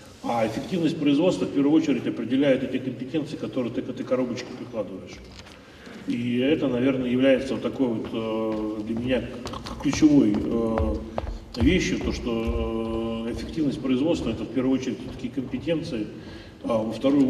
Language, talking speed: Russian, 140 wpm